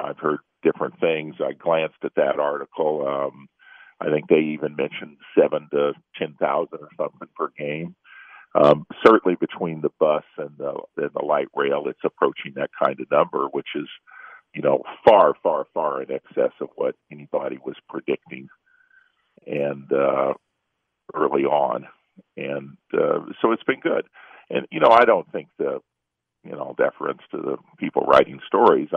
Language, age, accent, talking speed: English, 50-69, American, 160 wpm